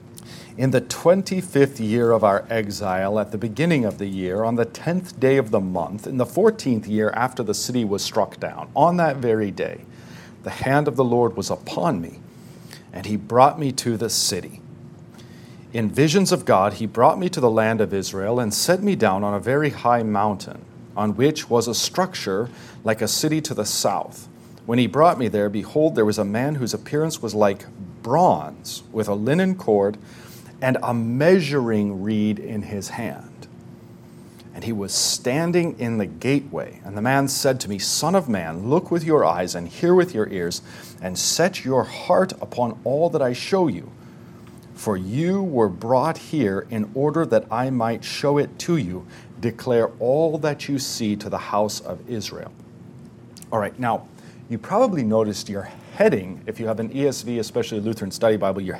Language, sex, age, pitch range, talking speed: English, male, 40-59, 105-145 Hz, 190 wpm